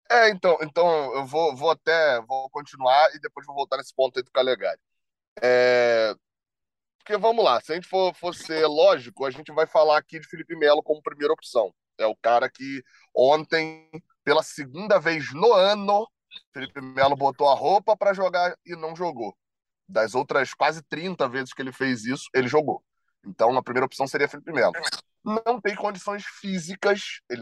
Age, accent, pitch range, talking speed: 20-39, Brazilian, 135-175 Hz, 180 wpm